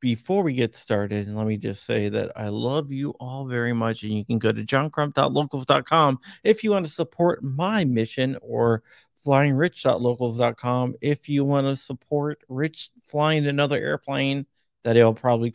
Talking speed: 165 wpm